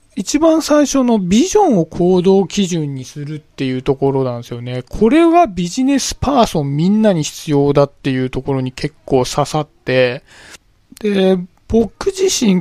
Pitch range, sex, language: 140-225 Hz, male, Japanese